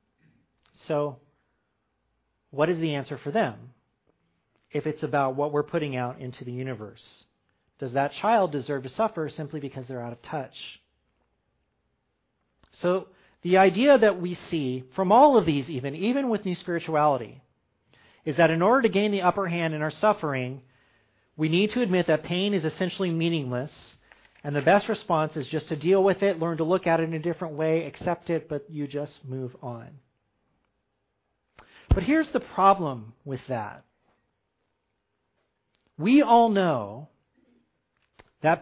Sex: male